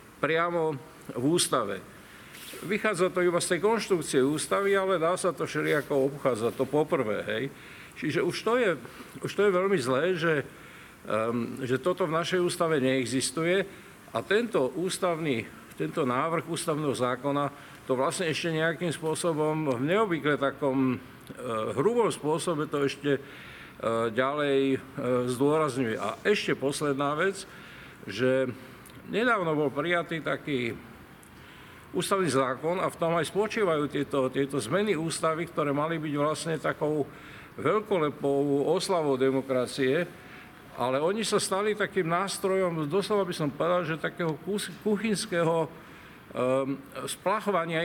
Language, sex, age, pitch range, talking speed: Slovak, male, 50-69, 135-180 Hz, 125 wpm